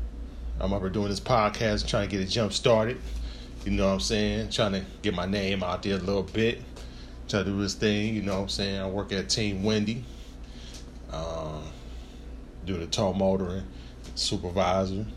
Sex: male